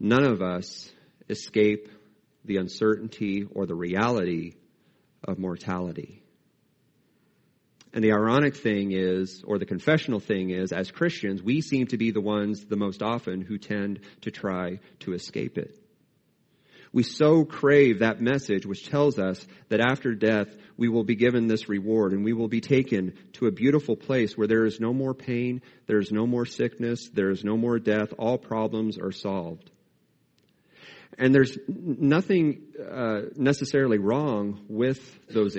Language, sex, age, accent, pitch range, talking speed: English, male, 40-59, American, 100-130 Hz, 155 wpm